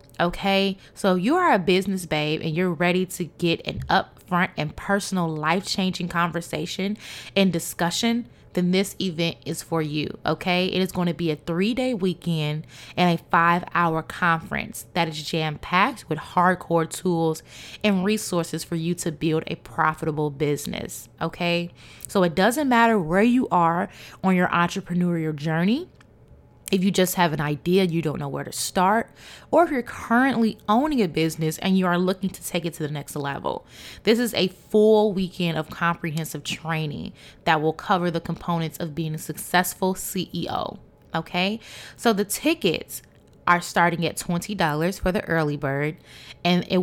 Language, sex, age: English, female, 20-39